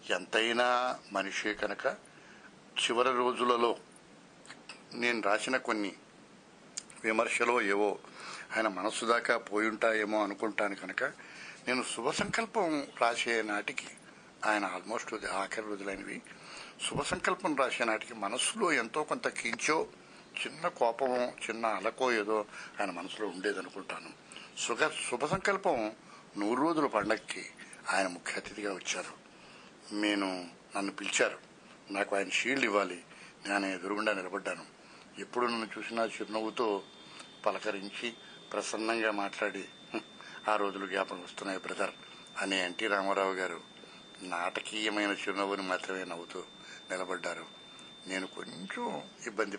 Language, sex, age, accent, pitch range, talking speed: Telugu, male, 60-79, native, 100-115 Hz, 105 wpm